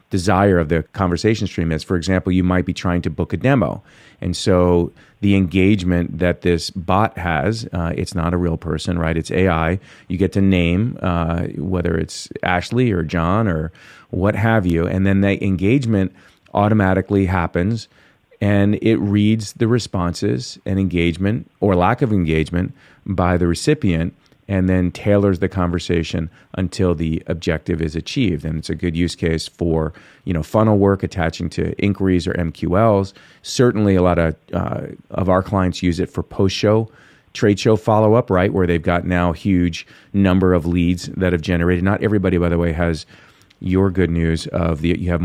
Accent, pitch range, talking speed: American, 85-100 Hz, 180 wpm